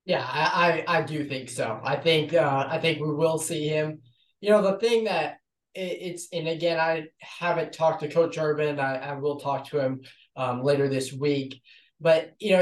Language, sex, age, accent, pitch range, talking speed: English, male, 20-39, American, 140-170 Hz, 210 wpm